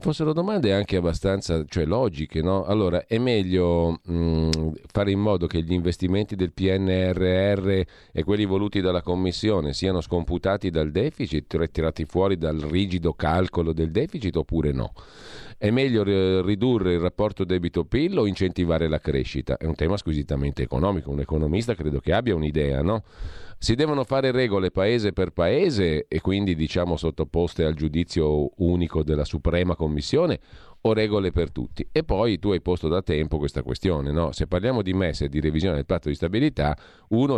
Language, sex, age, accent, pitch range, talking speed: Italian, male, 40-59, native, 80-95 Hz, 165 wpm